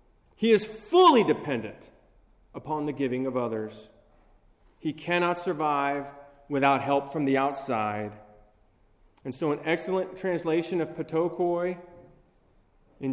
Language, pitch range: English, 115-185 Hz